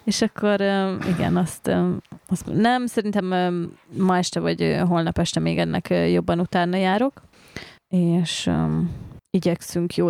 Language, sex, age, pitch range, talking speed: Hungarian, female, 20-39, 170-195 Hz, 120 wpm